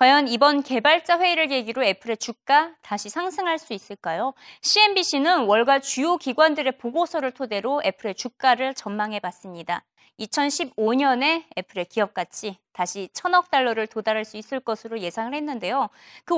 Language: Korean